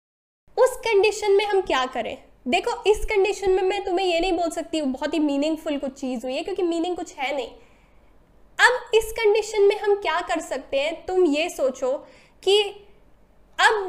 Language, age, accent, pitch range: Hindi, 10-29, native, 290-390 Hz